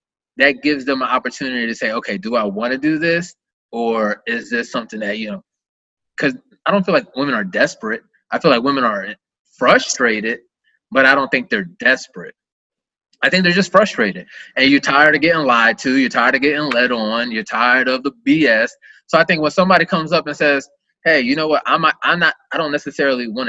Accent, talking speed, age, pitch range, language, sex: American, 220 wpm, 20-39, 130-210 Hz, English, male